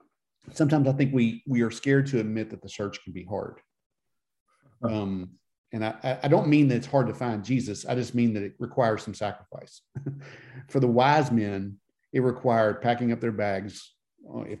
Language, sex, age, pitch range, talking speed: English, male, 40-59, 105-130 Hz, 190 wpm